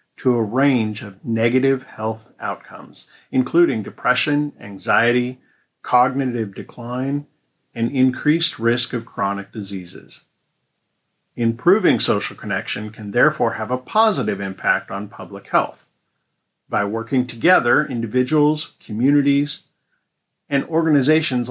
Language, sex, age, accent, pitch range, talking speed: English, male, 50-69, American, 110-145 Hz, 105 wpm